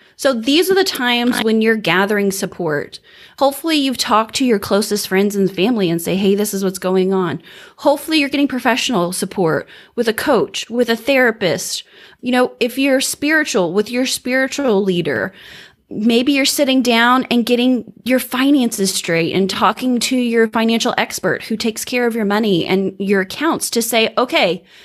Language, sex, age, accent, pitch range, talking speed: English, female, 30-49, American, 195-255 Hz, 175 wpm